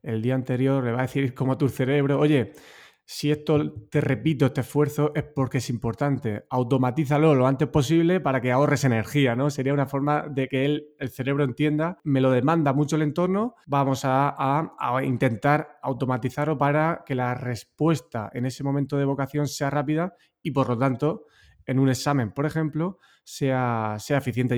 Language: Spanish